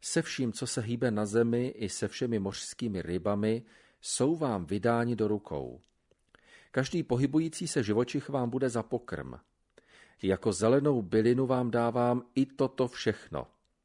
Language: Slovak